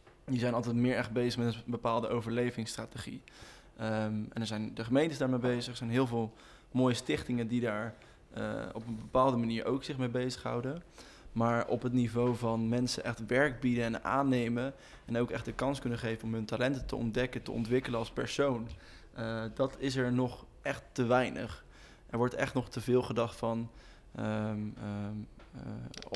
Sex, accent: male, Dutch